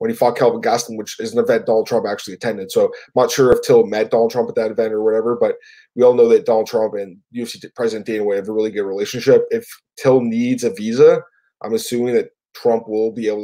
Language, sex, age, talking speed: English, male, 20-39, 245 wpm